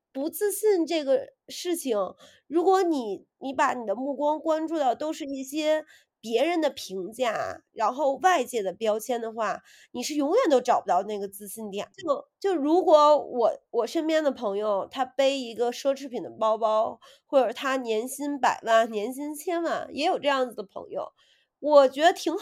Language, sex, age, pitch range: Chinese, female, 30-49, 255-335 Hz